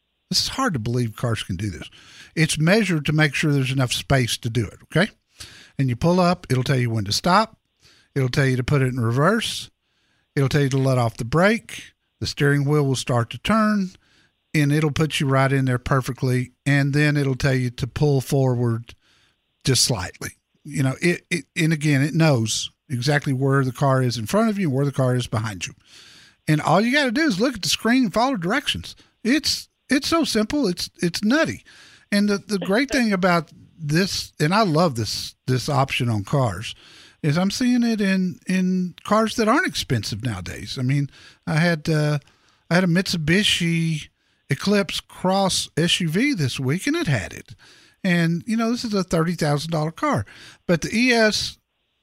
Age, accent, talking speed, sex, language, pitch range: 50-69, American, 200 wpm, male, English, 130-185 Hz